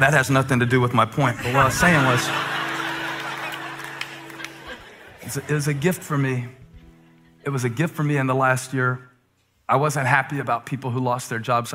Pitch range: 115-130 Hz